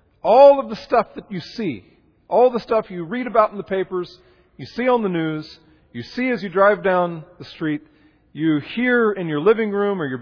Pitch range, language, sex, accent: 145-205 Hz, English, male, American